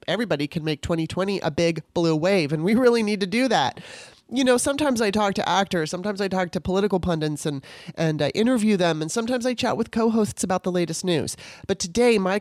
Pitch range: 170-210 Hz